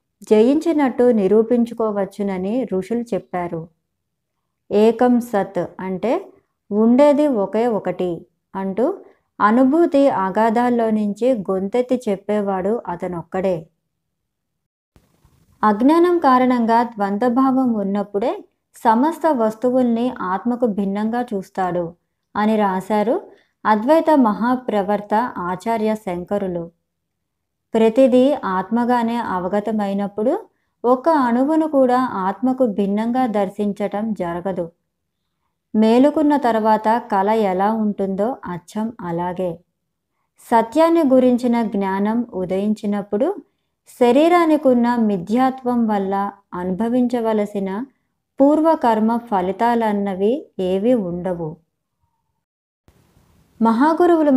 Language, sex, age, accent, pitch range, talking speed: Telugu, male, 20-39, native, 195-250 Hz, 70 wpm